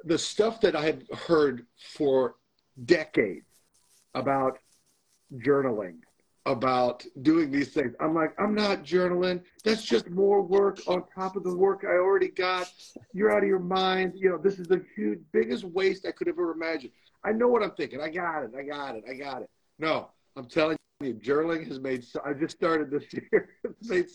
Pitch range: 150-200 Hz